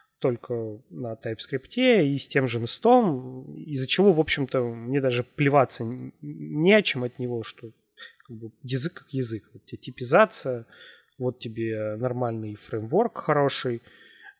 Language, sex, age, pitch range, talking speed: Russian, male, 20-39, 115-145 Hz, 140 wpm